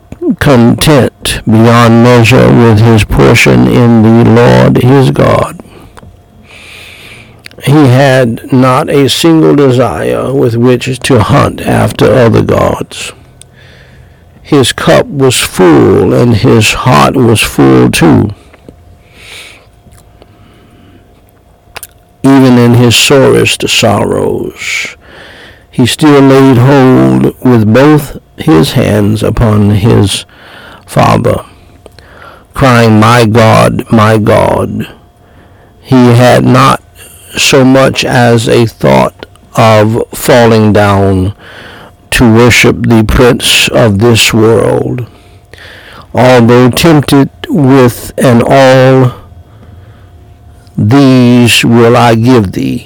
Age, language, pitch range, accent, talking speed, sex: 60-79, English, 100-125 Hz, American, 95 wpm, male